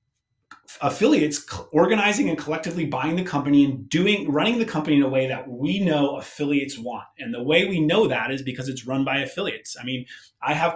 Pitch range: 135-170 Hz